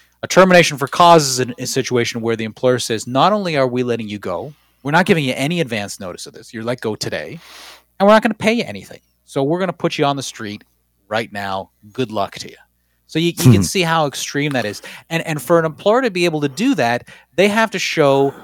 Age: 30-49